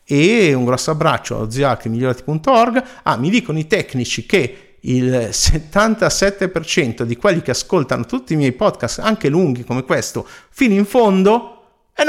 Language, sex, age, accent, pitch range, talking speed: Italian, male, 50-69, native, 105-160 Hz, 155 wpm